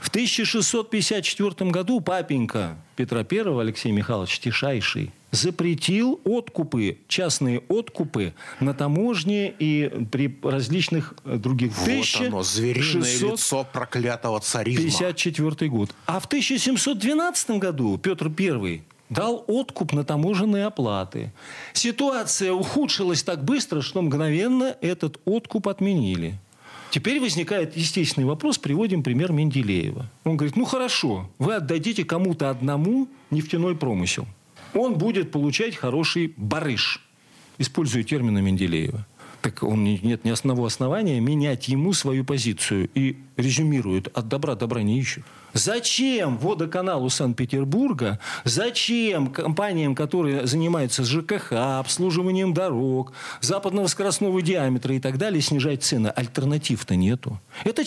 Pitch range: 130-195 Hz